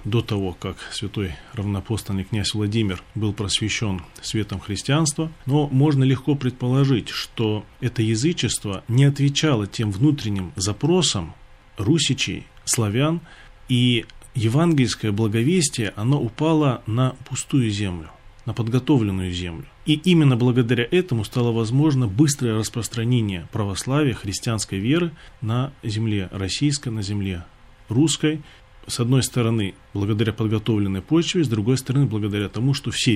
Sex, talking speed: male, 120 wpm